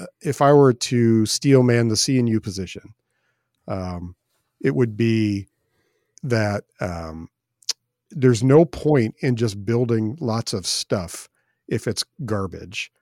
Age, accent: 50-69, American